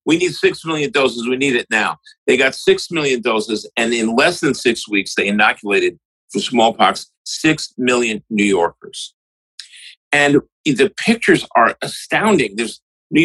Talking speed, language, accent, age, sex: 160 wpm, English, American, 50-69, male